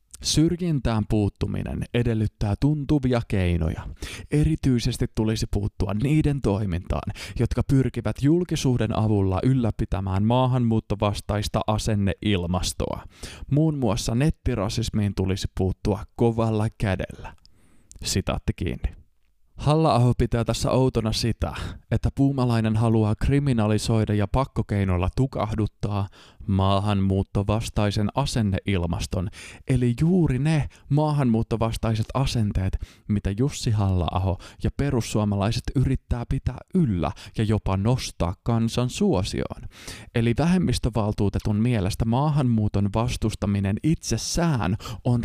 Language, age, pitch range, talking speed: Finnish, 20-39, 100-125 Hz, 85 wpm